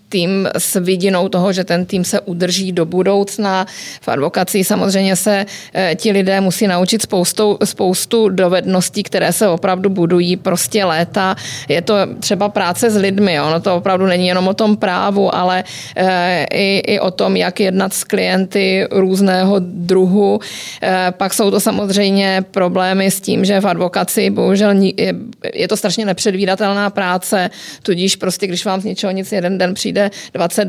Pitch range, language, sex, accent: 185-205 Hz, Czech, female, native